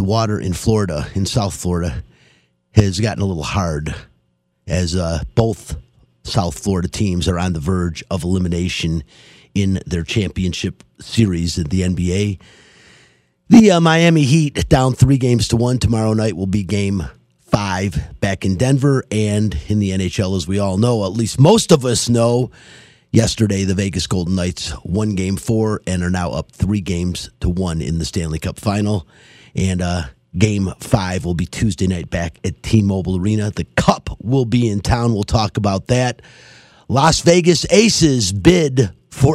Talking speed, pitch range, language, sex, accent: 170 wpm, 90-115 Hz, English, male, American